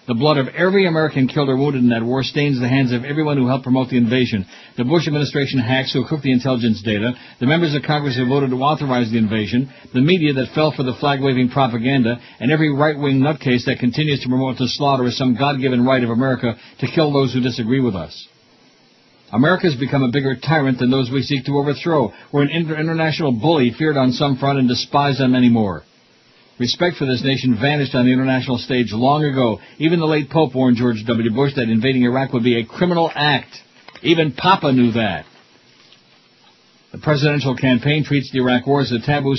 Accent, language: American, English